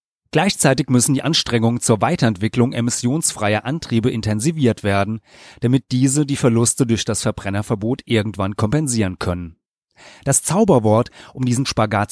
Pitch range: 110-140 Hz